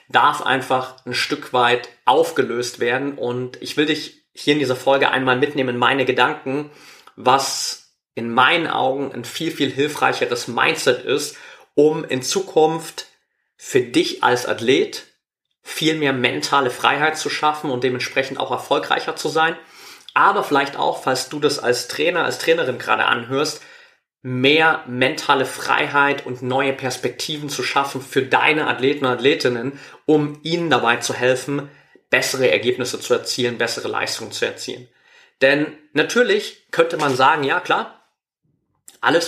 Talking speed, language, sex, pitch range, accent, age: 145 wpm, German, male, 130-190 Hz, German, 30-49